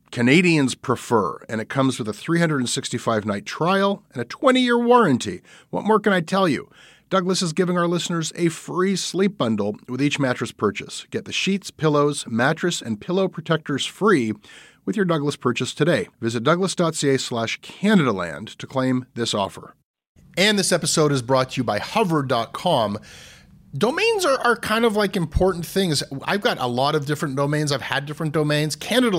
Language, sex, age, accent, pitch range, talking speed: English, male, 40-59, American, 120-175 Hz, 170 wpm